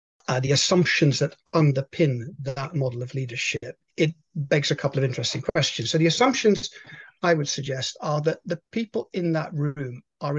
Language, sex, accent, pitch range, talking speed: English, male, British, 135-175 Hz, 175 wpm